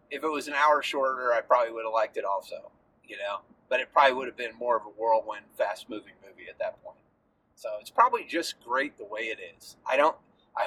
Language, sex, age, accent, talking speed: English, male, 30-49, American, 235 wpm